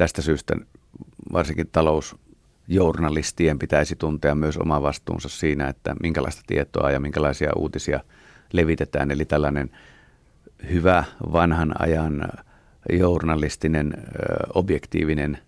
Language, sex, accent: Finnish, male, native